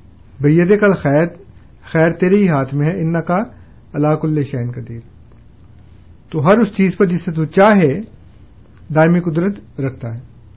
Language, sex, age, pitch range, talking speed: Urdu, male, 50-69, 120-170 Hz, 155 wpm